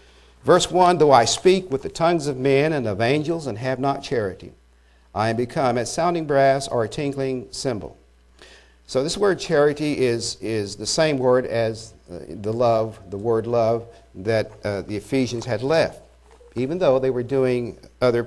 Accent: American